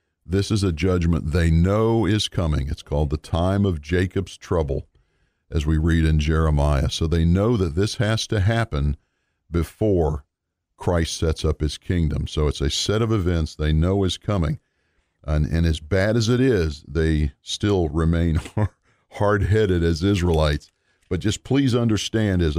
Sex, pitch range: male, 80-100 Hz